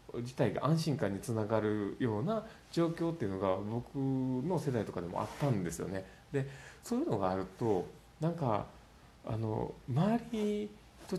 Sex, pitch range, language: male, 95-145 Hz, Japanese